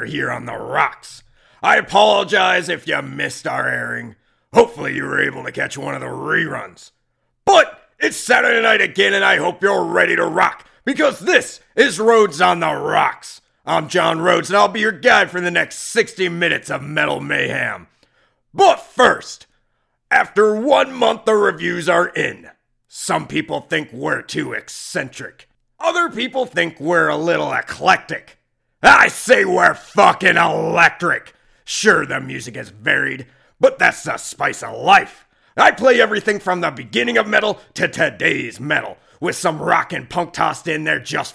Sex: male